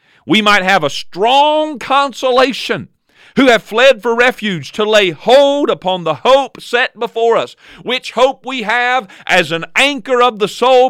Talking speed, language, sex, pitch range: 165 wpm, English, male, 175-240 Hz